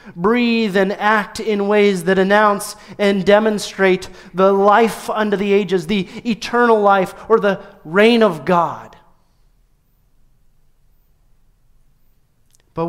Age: 40-59